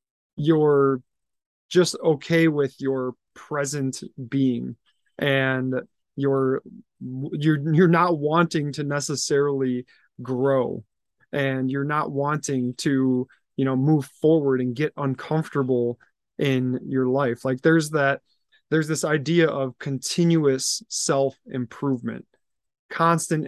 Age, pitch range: 20-39, 130-155 Hz